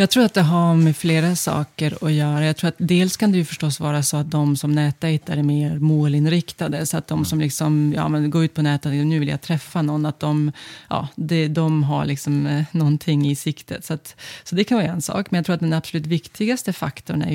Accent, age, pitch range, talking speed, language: native, 30-49, 150-170 Hz, 240 wpm, Swedish